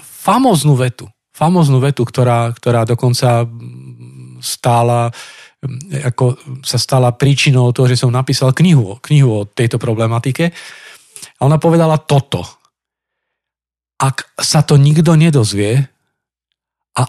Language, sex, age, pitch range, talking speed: Slovak, male, 40-59, 125-155 Hz, 105 wpm